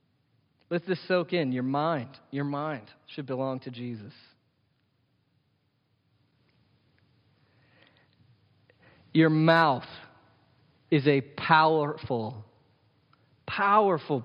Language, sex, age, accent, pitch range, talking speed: English, male, 40-59, American, 125-160 Hz, 75 wpm